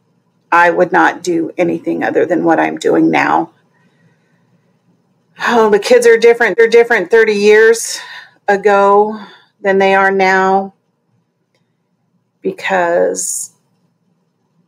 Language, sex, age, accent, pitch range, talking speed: English, female, 40-59, American, 170-215 Hz, 105 wpm